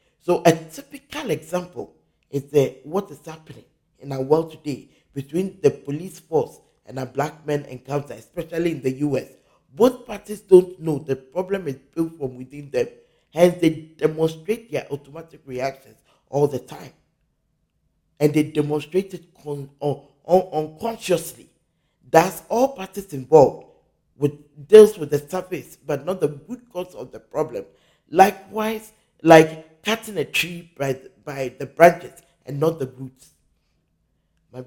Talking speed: 150 wpm